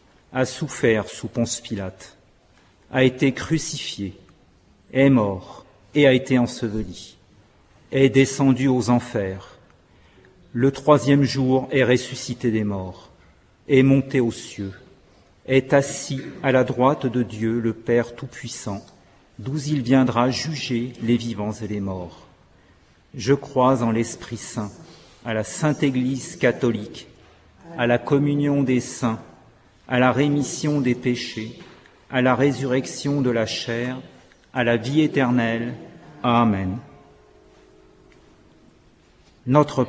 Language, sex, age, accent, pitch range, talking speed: French, male, 50-69, French, 110-135 Hz, 120 wpm